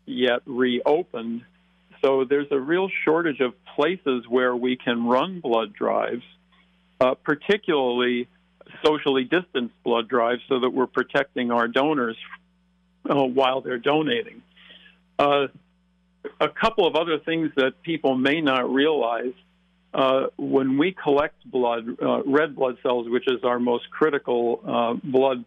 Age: 50-69